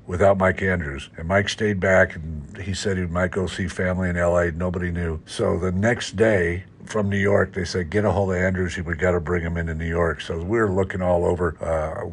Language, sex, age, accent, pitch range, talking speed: English, male, 60-79, American, 85-100 Hz, 240 wpm